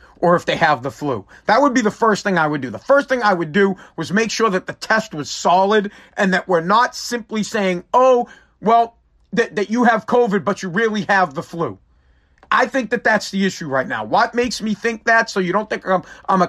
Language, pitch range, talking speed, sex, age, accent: English, 160-210 Hz, 245 wpm, male, 40-59, American